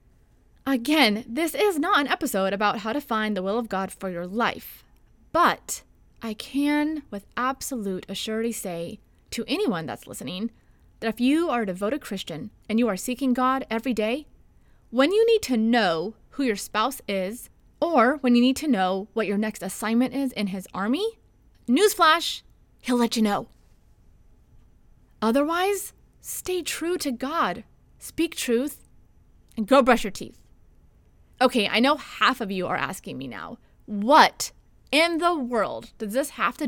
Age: 30-49